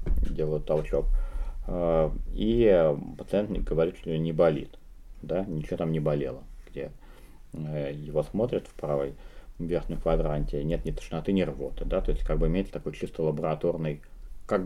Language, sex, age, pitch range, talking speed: English, male, 30-49, 75-100 Hz, 145 wpm